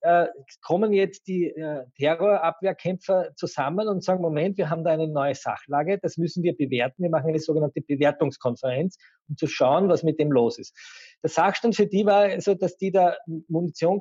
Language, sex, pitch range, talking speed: German, male, 150-185 Hz, 175 wpm